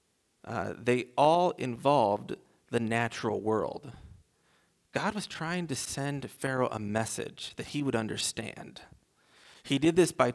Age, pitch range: 40-59, 110-140 Hz